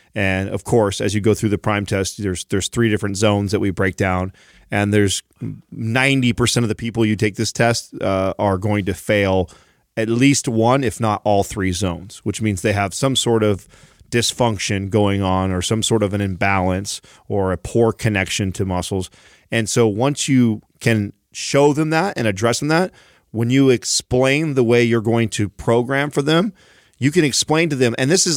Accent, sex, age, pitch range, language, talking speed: American, male, 30-49, 105-130 Hz, English, 200 wpm